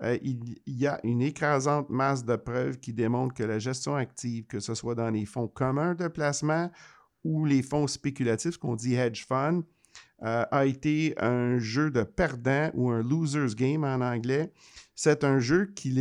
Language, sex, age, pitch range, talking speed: French, male, 50-69, 125-150 Hz, 200 wpm